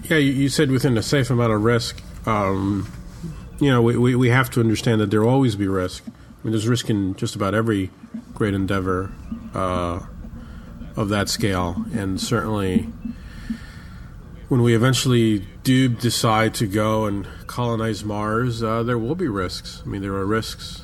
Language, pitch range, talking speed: English, 95-115 Hz, 170 wpm